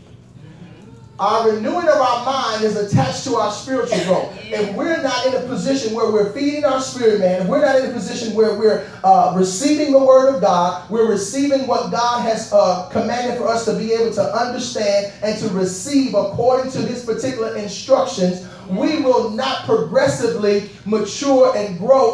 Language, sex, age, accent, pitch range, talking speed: English, male, 30-49, American, 215-265 Hz, 180 wpm